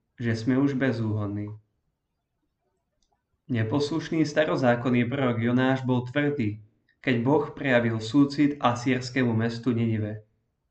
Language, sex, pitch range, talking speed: Slovak, male, 115-135 Hz, 95 wpm